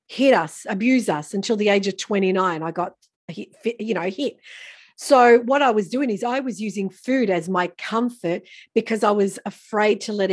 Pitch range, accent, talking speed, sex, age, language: 190-245 Hz, Australian, 190 wpm, female, 40-59, English